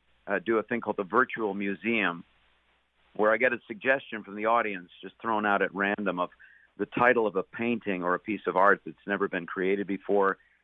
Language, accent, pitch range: English, American, 95-120 Hz